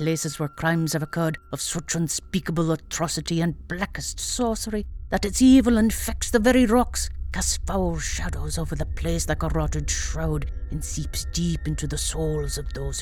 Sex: female